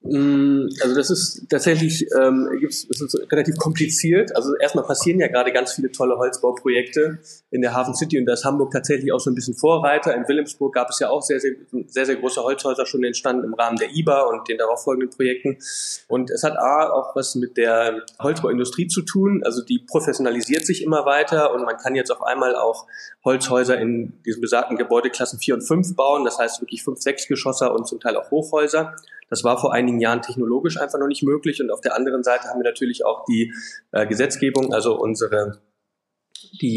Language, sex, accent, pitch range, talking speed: German, male, German, 120-145 Hz, 200 wpm